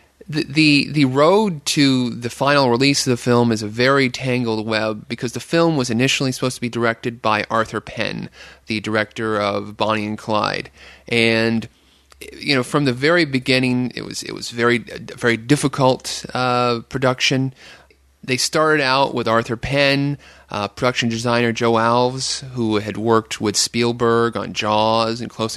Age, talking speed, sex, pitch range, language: 30-49, 165 wpm, male, 115-135 Hz, English